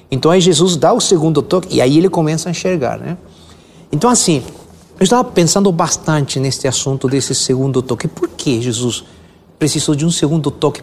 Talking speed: 185 wpm